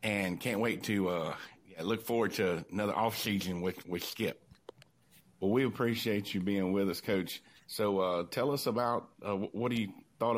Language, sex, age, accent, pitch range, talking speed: English, male, 50-69, American, 95-115 Hz, 185 wpm